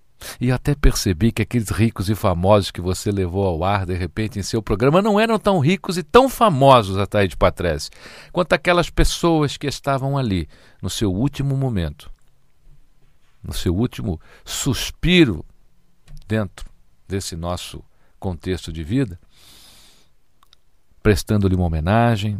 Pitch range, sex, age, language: 85-110 Hz, male, 60-79, Portuguese